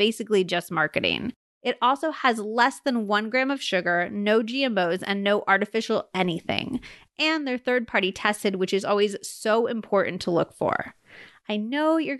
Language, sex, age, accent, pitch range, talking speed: English, female, 20-39, American, 195-255 Hz, 160 wpm